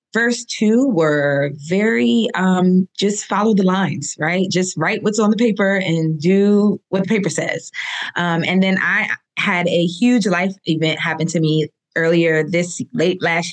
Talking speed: 170 wpm